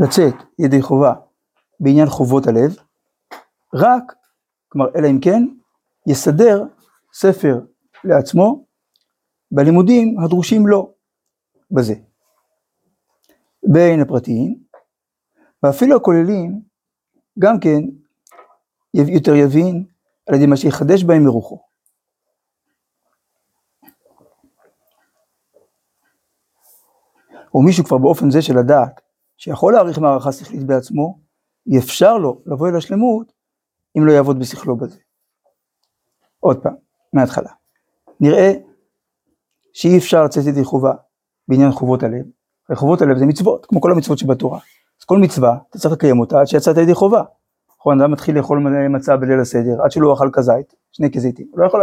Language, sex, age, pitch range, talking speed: Hebrew, male, 60-79, 135-185 Hz, 115 wpm